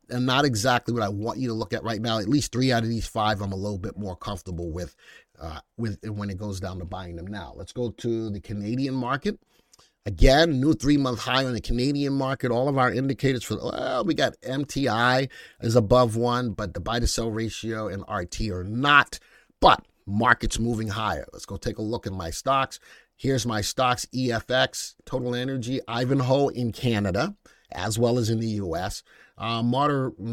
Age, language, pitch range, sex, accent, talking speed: 30-49, English, 105-130 Hz, male, American, 200 wpm